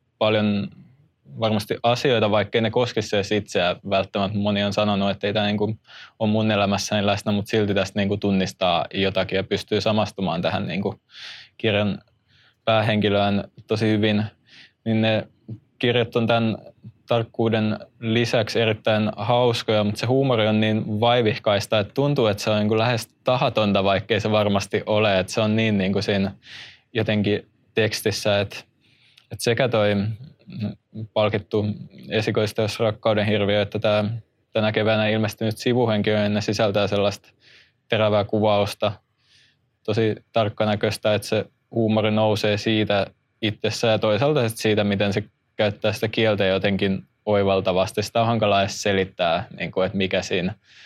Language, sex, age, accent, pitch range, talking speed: Finnish, male, 20-39, native, 100-110 Hz, 140 wpm